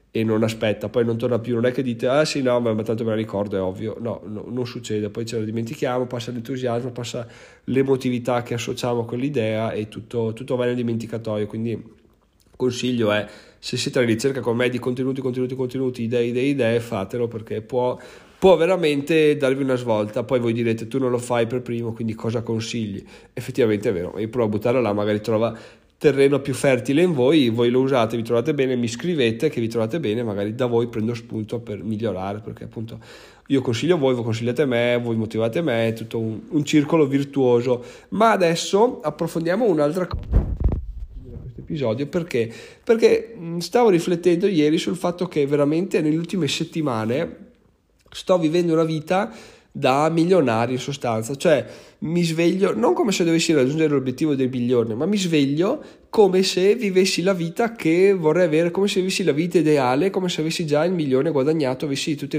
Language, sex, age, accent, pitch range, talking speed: Italian, male, 30-49, native, 115-155 Hz, 190 wpm